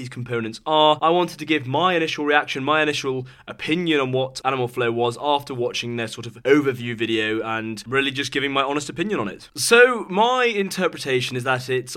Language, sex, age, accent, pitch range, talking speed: English, male, 20-39, British, 120-150 Hz, 200 wpm